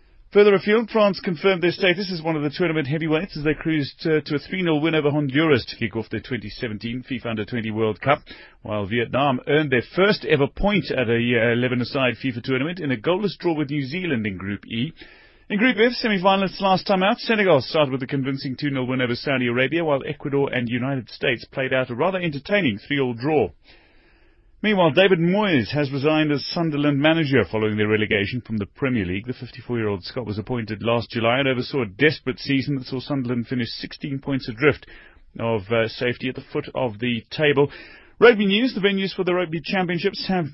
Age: 30-49